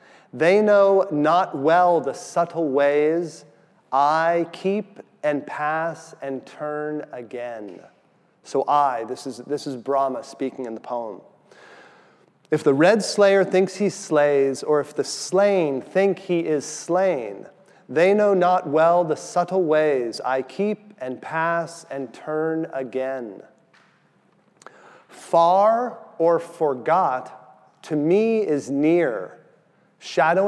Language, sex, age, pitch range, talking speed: English, male, 40-59, 140-185 Hz, 120 wpm